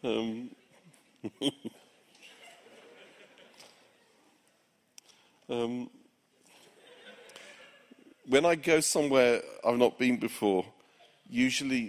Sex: male